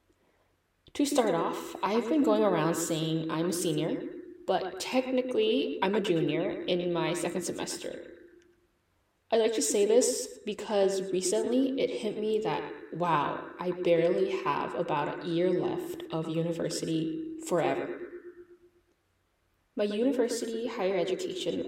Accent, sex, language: American, female, Korean